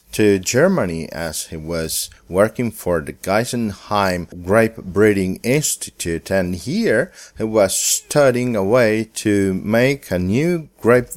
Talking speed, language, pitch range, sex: 130 wpm, English, 85-110 Hz, male